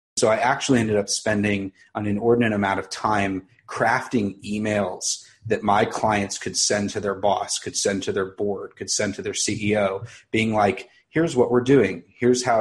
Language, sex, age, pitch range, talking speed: English, male, 30-49, 100-120 Hz, 185 wpm